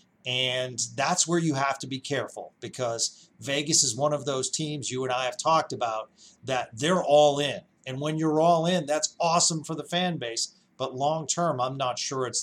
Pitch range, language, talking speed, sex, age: 130-160 Hz, English, 210 wpm, male, 40-59